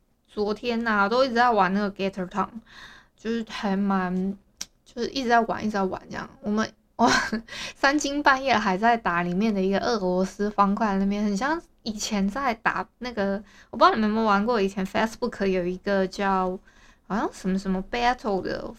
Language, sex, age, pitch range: Chinese, female, 20-39, 195-245 Hz